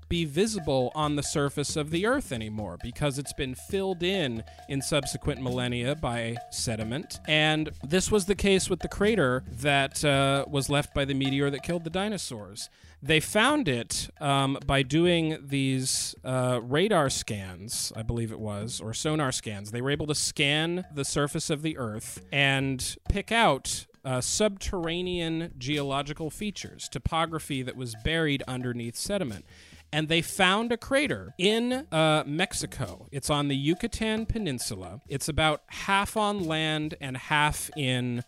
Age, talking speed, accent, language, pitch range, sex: 40-59, 155 wpm, American, English, 125-160 Hz, male